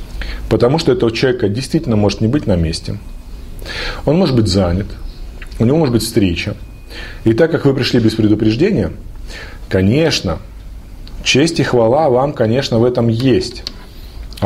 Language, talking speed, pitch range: Russian, 145 wpm, 95-115 Hz